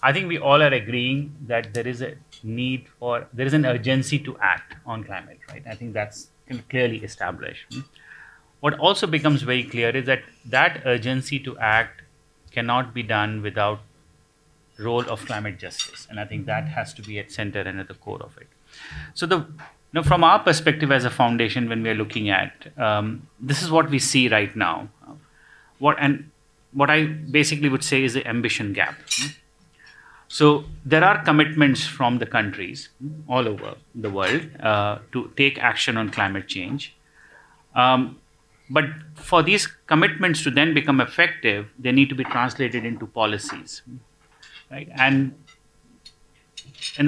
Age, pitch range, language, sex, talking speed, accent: 30-49, 115-150 Hz, English, male, 165 wpm, Indian